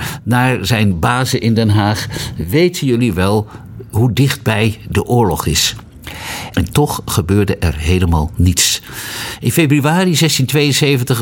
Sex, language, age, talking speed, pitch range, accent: male, Dutch, 60-79, 125 wpm, 100-135 Hz, Dutch